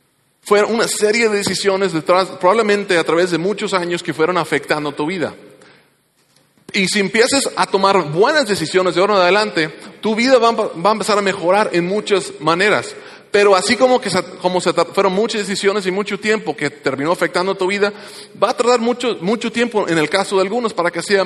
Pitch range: 180-240 Hz